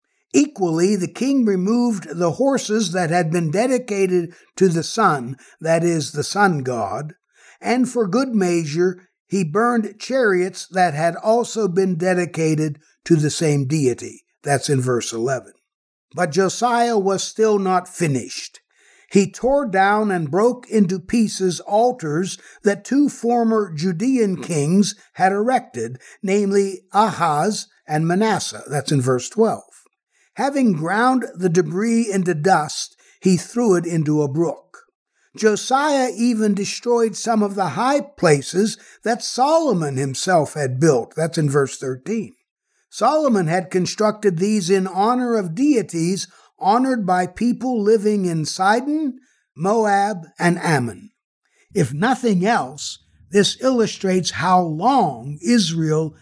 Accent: American